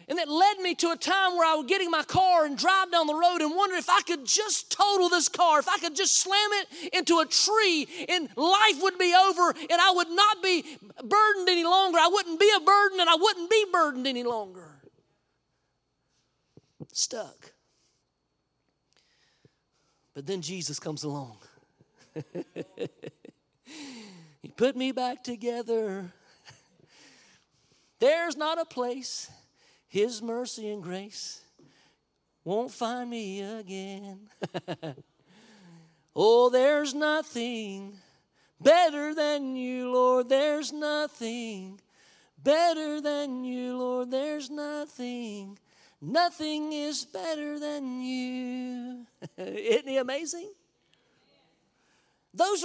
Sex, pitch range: male, 235-340 Hz